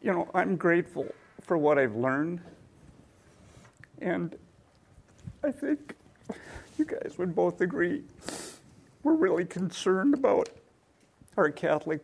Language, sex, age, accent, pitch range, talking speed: English, male, 50-69, American, 130-170 Hz, 125 wpm